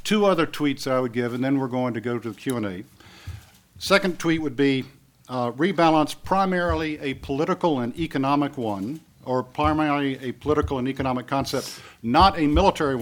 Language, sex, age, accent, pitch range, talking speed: English, male, 50-69, American, 120-145 Hz, 170 wpm